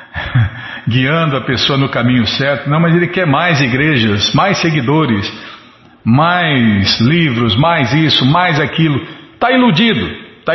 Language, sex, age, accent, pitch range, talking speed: Portuguese, male, 50-69, Brazilian, 125-175 Hz, 130 wpm